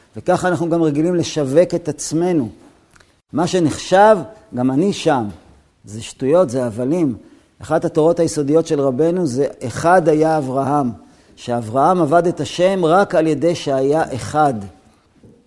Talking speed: 130 wpm